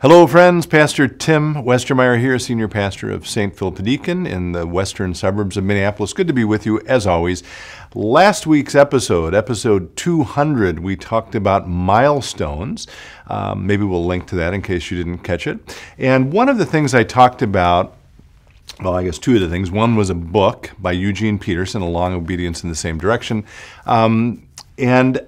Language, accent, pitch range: English, American, 90-125 Hz